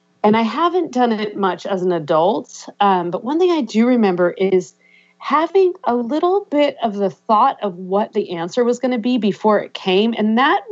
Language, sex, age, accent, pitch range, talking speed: English, female, 40-59, American, 195-245 Hz, 205 wpm